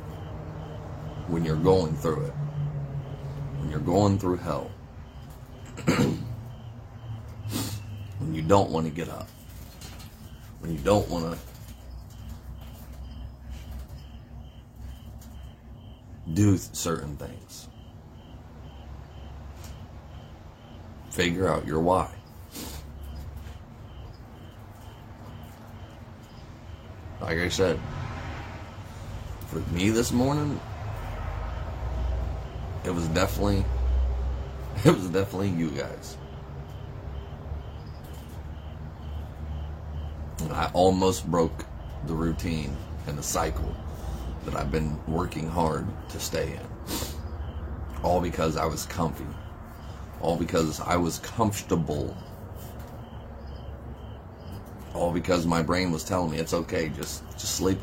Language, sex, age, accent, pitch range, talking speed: English, male, 40-59, American, 80-100 Hz, 85 wpm